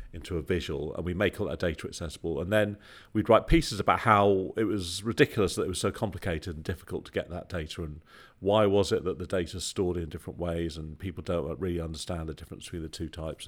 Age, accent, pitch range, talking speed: 40-59, British, 85-105 Hz, 240 wpm